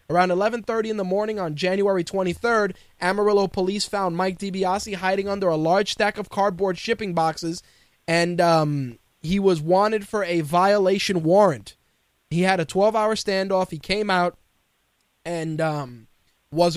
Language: English